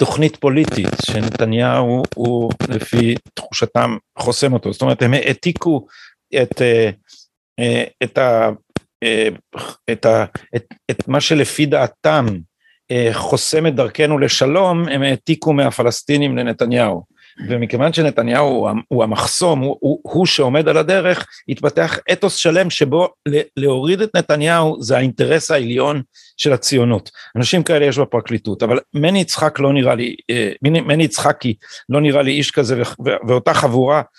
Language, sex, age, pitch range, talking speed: Hebrew, male, 50-69, 125-160 Hz, 125 wpm